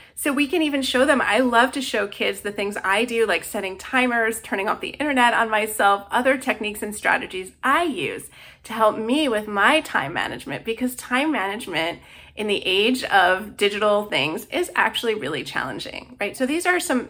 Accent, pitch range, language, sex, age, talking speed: American, 200-275 Hz, English, female, 30-49, 195 wpm